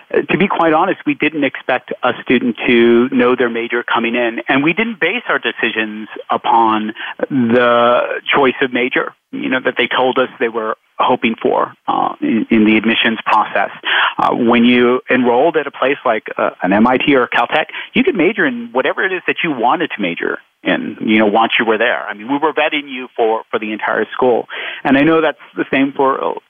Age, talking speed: 40-59, 210 wpm